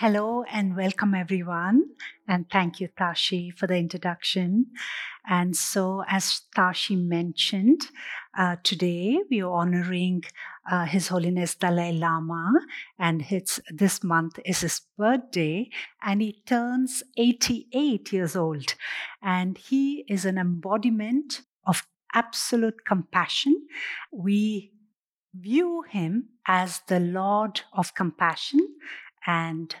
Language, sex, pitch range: English, female, 180-240 Hz